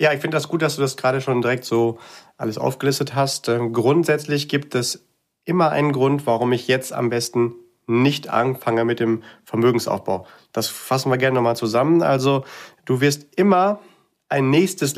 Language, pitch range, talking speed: German, 115-140 Hz, 170 wpm